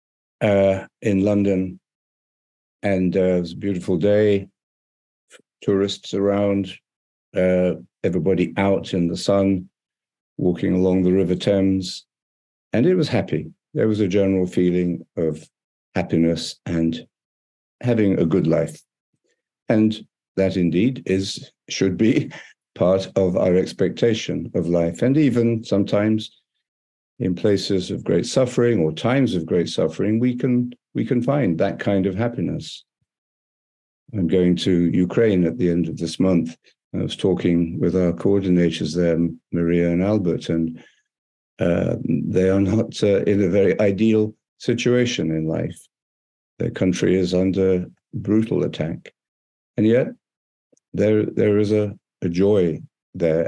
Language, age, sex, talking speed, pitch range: English, 60-79, male, 135 wpm, 85-105 Hz